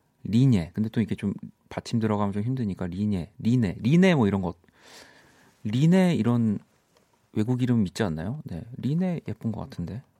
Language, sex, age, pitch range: Korean, male, 40-59, 95-130 Hz